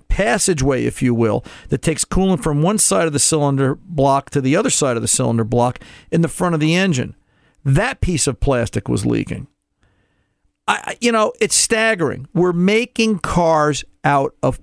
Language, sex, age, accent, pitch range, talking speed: English, male, 50-69, American, 145-205 Hz, 180 wpm